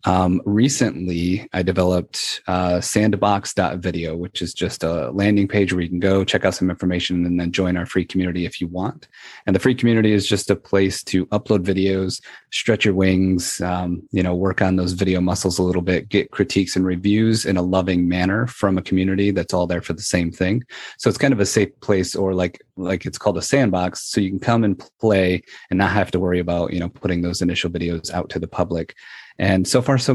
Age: 30-49